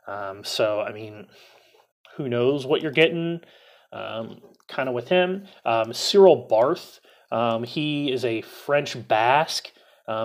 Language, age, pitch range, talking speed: English, 30-49, 115-155 Hz, 135 wpm